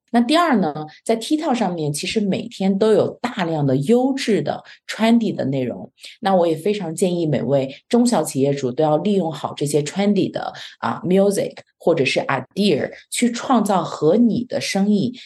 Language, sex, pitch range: Chinese, female, 145-205 Hz